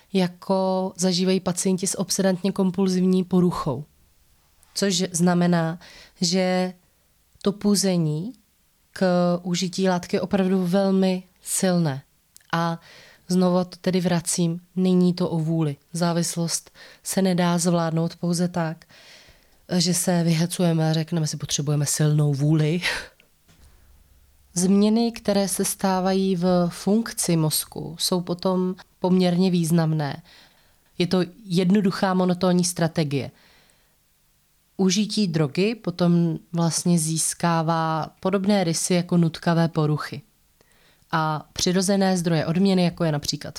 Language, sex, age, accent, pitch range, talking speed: Czech, female, 20-39, native, 160-190 Hz, 105 wpm